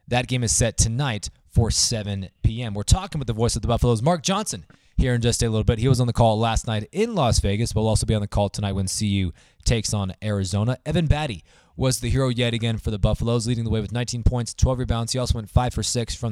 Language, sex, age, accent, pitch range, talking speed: English, male, 20-39, American, 105-125 Hz, 265 wpm